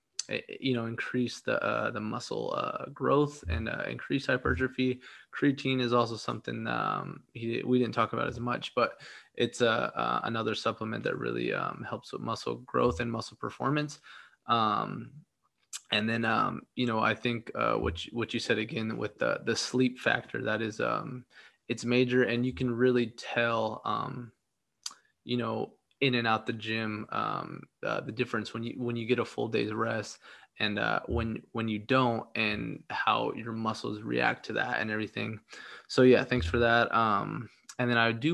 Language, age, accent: English, 20-39, American